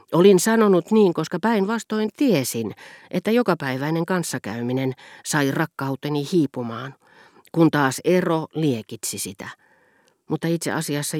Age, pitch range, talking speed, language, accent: 40-59, 125-165 Hz, 105 wpm, Finnish, native